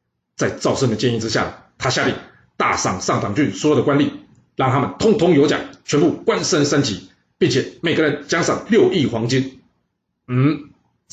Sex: male